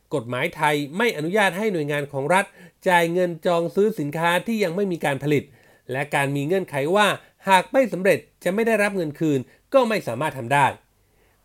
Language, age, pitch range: Thai, 30-49, 145-195 Hz